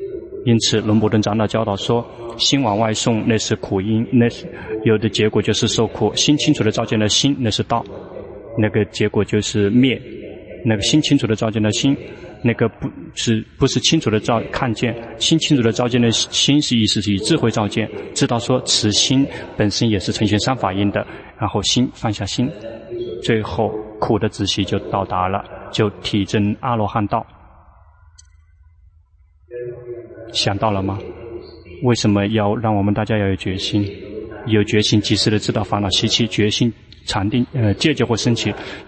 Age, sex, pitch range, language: 20-39, male, 105-120 Hz, Chinese